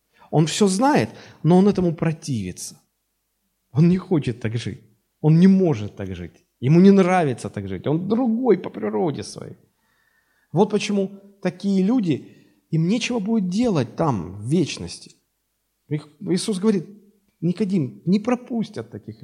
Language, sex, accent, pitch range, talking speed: Russian, male, native, 130-195 Hz, 135 wpm